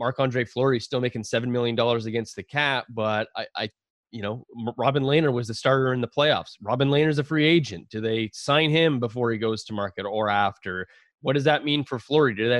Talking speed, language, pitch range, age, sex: 235 wpm, English, 110-155 Hz, 20-39, male